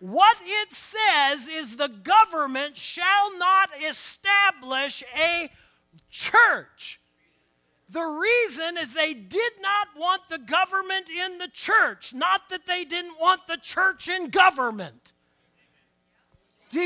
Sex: male